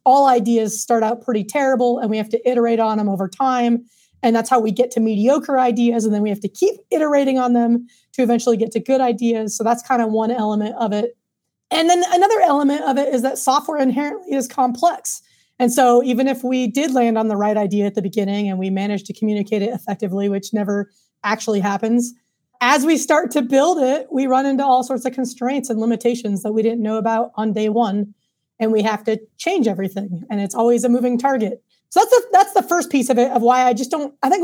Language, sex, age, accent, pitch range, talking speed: English, female, 30-49, American, 215-270 Hz, 230 wpm